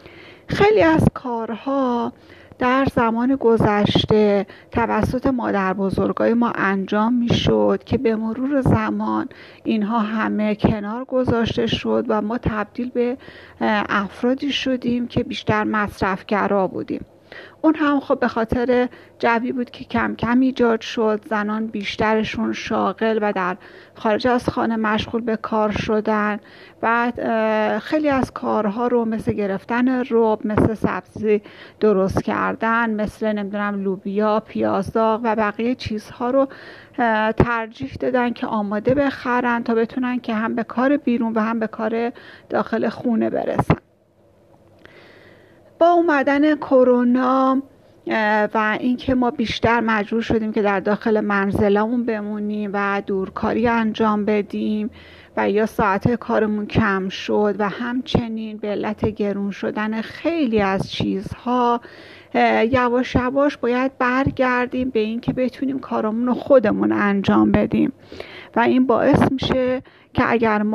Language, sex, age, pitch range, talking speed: Persian, female, 40-59, 210-245 Hz, 125 wpm